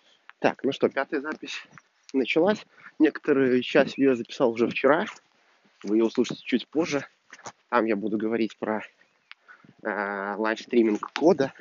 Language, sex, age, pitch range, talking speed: Russian, male, 30-49, 110-130 Hz, 130 wpm